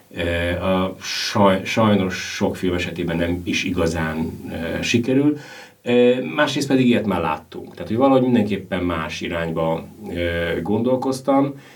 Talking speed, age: 100 wpm, 30-49